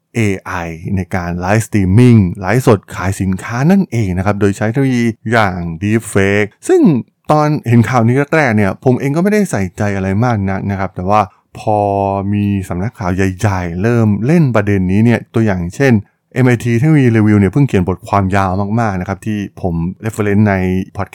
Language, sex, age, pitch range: Thai, male, 20-39, 100-140 Hz